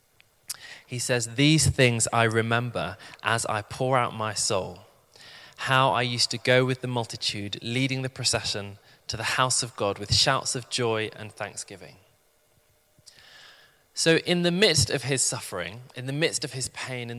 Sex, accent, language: male, British, English